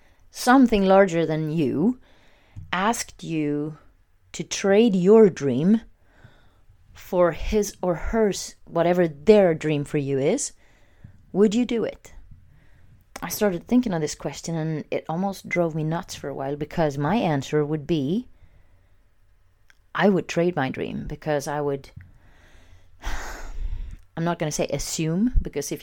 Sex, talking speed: female, 140 wpm